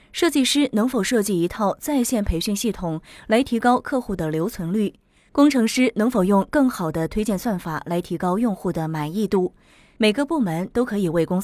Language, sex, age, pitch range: Chinese, female, 20-39, 175-240 Hz